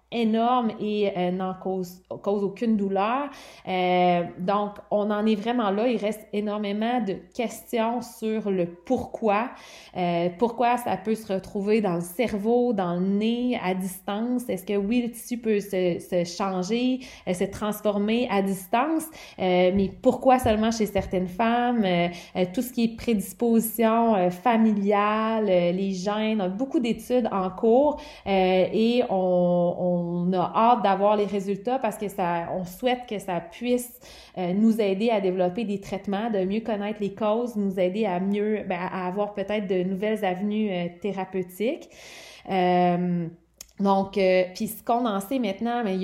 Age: 30-49